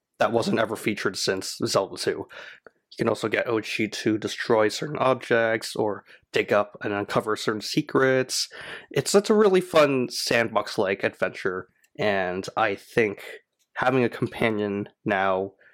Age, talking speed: 20-39, 140 wpm